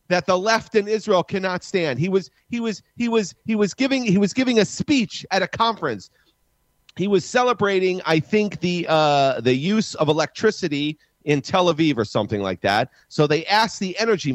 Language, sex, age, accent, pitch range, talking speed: English, male, 40-59, American, 155-225 Hz, 195 wpm